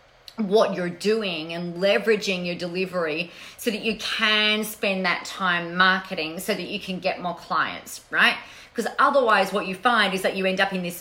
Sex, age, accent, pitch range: female, 30-49, Australian, 180-240 Hz